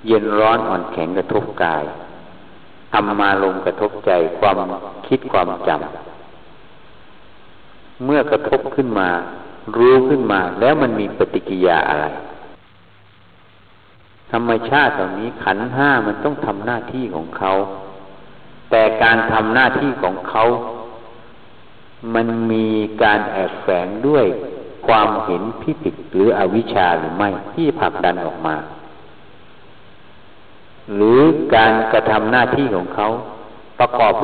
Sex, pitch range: male, 95-120 Hz